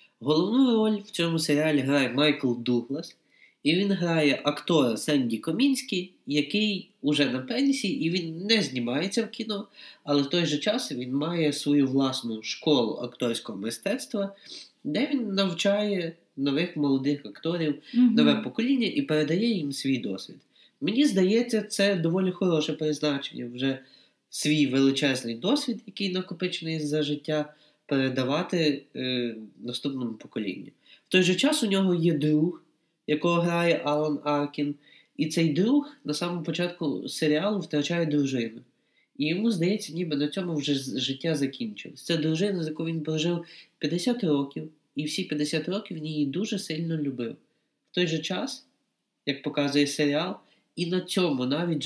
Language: Ukrainian